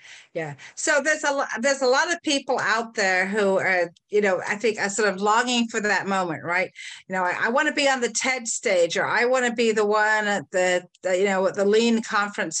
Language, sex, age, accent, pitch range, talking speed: English, female, 50-69, American, 190-245 Hz, 250 wpm